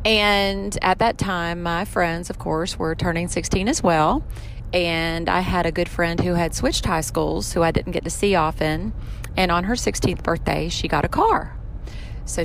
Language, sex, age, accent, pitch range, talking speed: English, female, 30-49, American, 165-200 Hz, 200 wpm